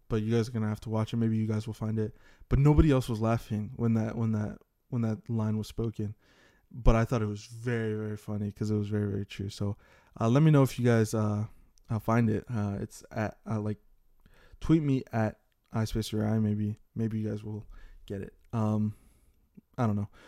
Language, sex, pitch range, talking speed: English, male, 105-120 Hz, 220 wpm